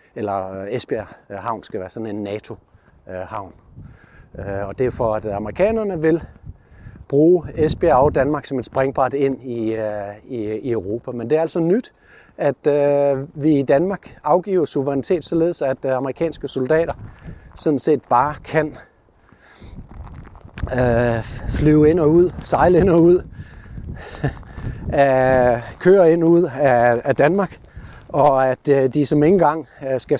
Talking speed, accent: 125 wpm, native